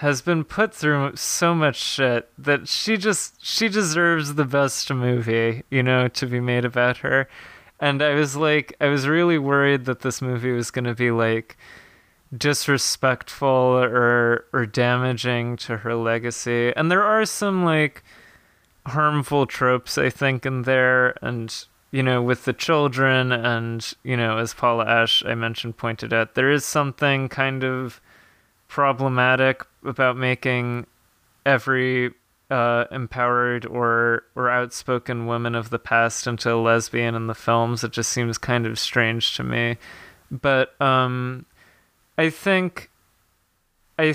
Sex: male